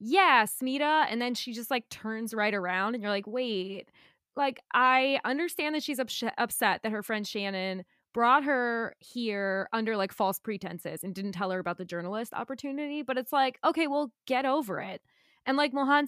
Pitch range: 205-275 Hz